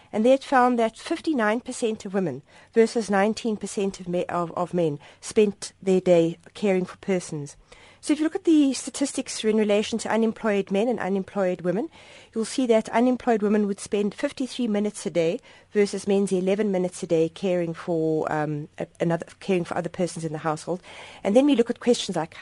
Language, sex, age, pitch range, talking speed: English, female, 40-59, 180-225 Hz, 180 wpm